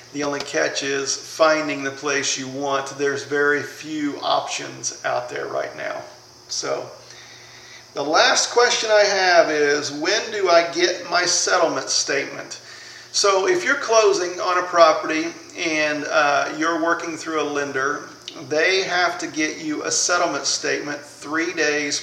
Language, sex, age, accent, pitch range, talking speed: English, male, 40-59, American, 140-175 Hz, 150 wpm